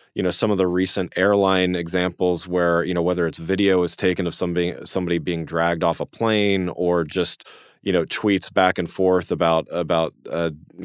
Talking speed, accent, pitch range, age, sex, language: 195 wpm, American, 85-95 Hz, 30-49, male, English